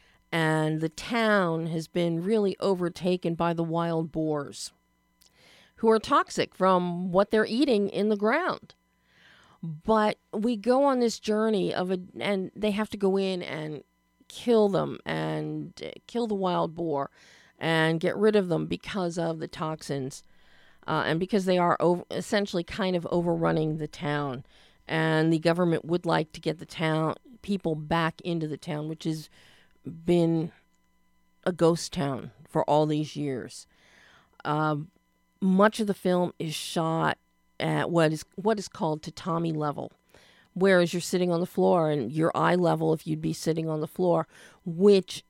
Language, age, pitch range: English, 40-59, 155-190 Hz